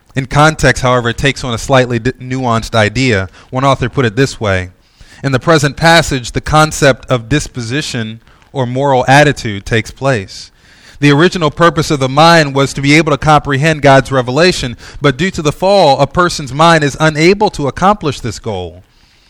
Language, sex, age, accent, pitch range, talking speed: English, male, 30-49, American, 110-140 Hz, 175 wpm